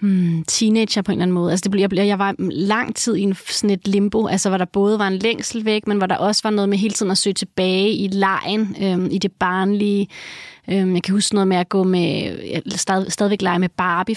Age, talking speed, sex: 30-49, 235 wpm, female